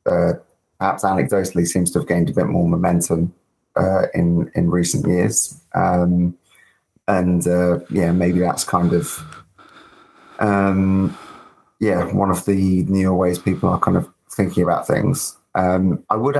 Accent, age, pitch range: British, 20-39, 85-100 Hz